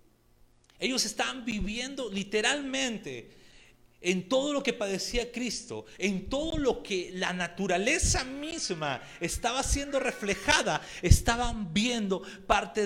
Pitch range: 150-220 Hz